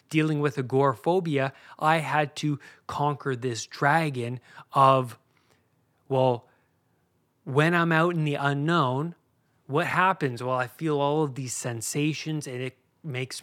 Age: 20-39